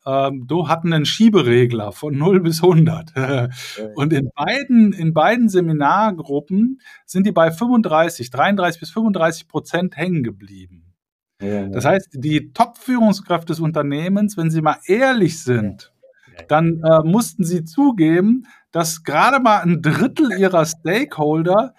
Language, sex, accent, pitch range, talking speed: German, male, German, 145-195 Hz, 125 wpm